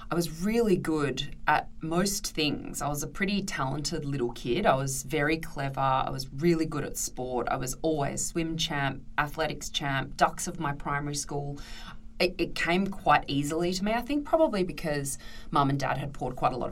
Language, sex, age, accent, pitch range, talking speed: English, female, 20-39, Australian, 140-175 Hz, 195 wpm